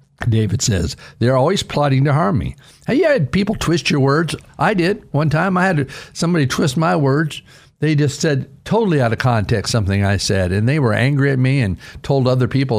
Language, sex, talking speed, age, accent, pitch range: English, male, 210 wpm, 60-79, American, 125-170 Hz